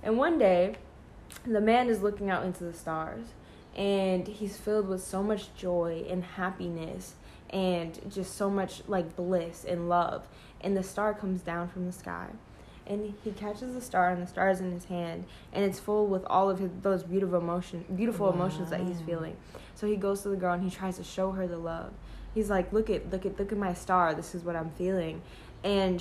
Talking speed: 210 wpm